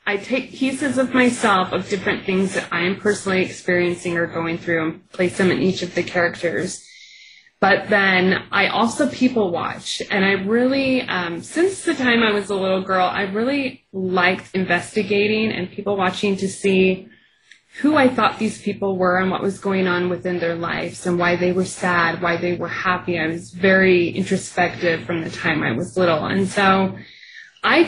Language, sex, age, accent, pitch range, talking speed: English, female, 20-39, American, 180-210 Hz, 185 wpm